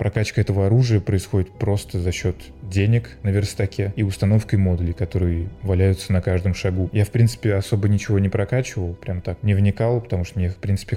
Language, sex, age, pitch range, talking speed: Russian, male, 20-39, 90-105 Hz, 185 wpm